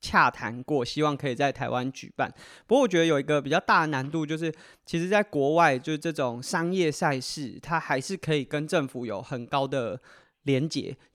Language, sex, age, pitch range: Chinese, male, 20-39, 130-165 Hz